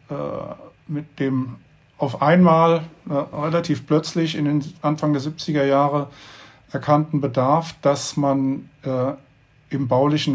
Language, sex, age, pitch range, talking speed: German, male, 50-69, 130-150 Hz, 115 wpm